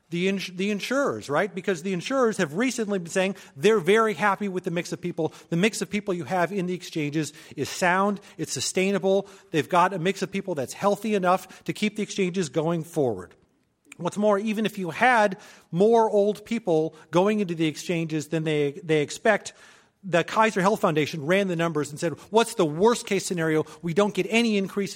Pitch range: 165-200 Hz